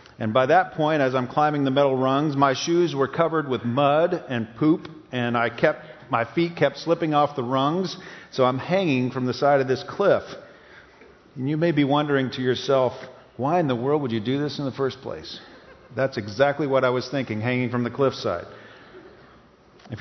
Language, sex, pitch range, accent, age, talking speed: English, male, 120-145 Hz, American, 50-69, 200 wpm